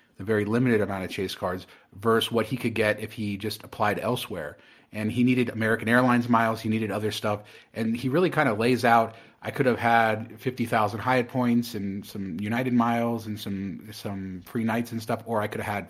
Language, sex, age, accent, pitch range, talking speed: English, male, 30-49, American, 100-120 Hz, 215 wpm